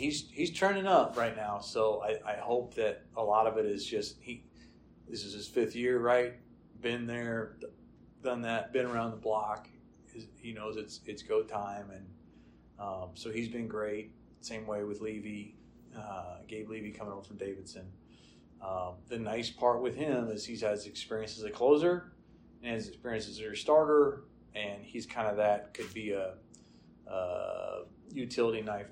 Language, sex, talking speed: English, male, 180 wpm